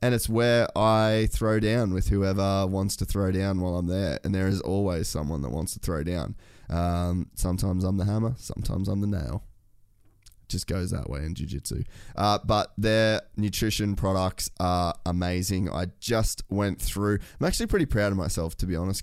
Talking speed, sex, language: 190 wpm, male, English